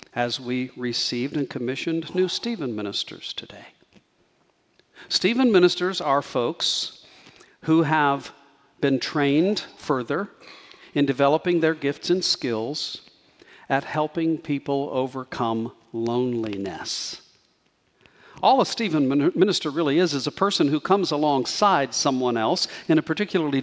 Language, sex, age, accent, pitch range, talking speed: English, male, 50-69, American, 140-185 Hz, 115 wpm